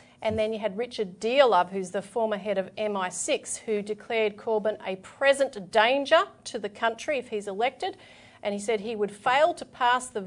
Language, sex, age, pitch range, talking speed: English, female, 40-59, 205-245 Hz, 195 wpm